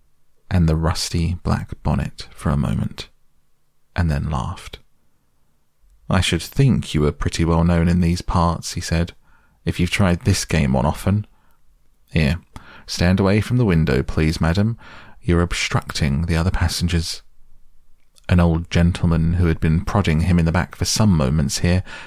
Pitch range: 80-95 Hz